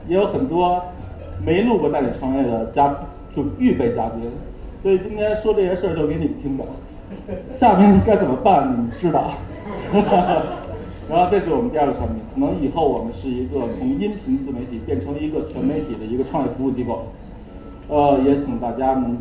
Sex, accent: male, native